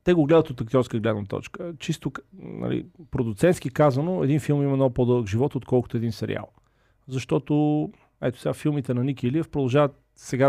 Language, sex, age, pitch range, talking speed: Bulgarian, male, 40-59, 120-145 Hz, 165 wpm